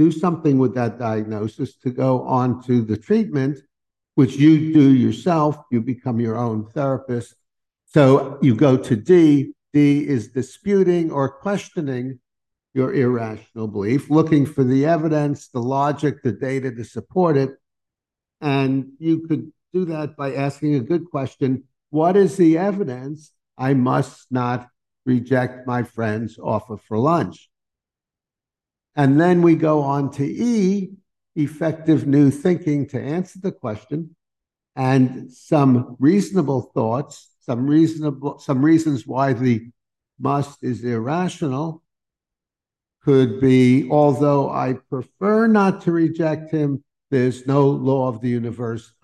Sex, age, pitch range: male, 50-69, 125-155 Hz